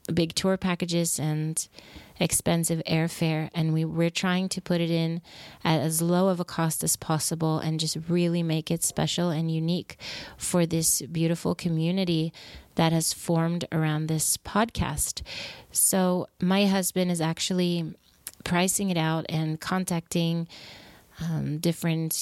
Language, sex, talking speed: English, female, 140 wpm